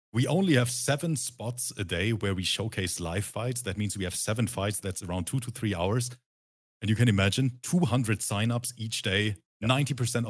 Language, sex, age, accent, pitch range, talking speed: English, male, 40-59, German, 100-130 Hz, 190 wpm